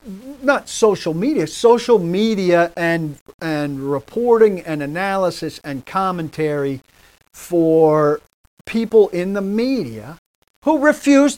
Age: 50-69